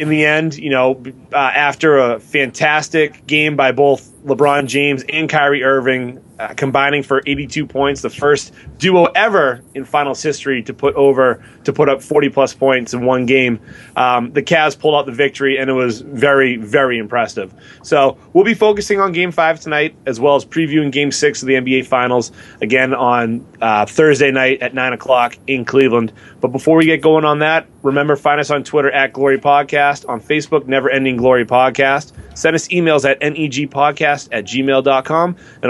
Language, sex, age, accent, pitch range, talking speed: English, male, 30-49, American, 130-155 Hz, 185 wpm